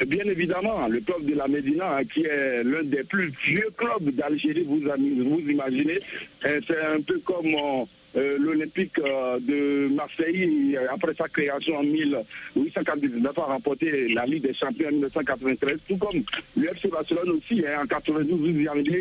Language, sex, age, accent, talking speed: French, male, 60-79, French, 140 wpm